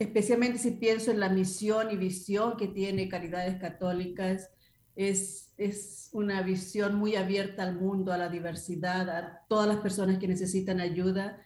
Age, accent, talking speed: 40-59, American, 155 wpm